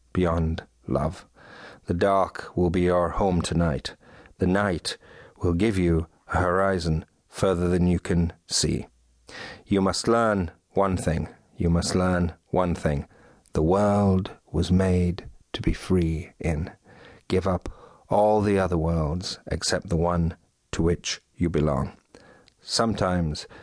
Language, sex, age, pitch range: English, male, 50-69, 80-95 Hz